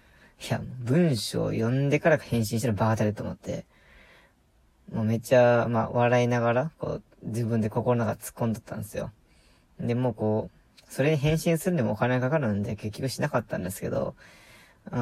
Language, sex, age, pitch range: Japanese, female, 20-39, 110-125 Hz